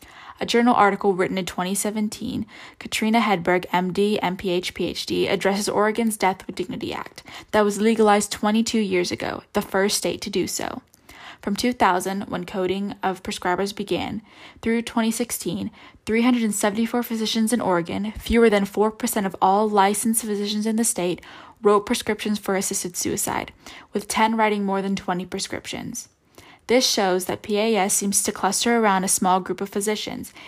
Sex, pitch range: female, 185-225 Hz